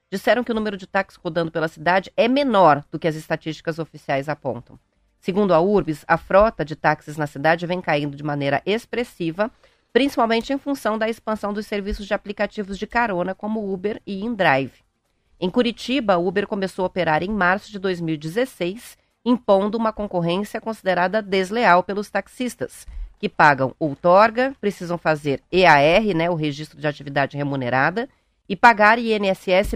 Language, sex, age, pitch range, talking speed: Portuguese, female, 30-49, 165-215 Hz, 155 wpm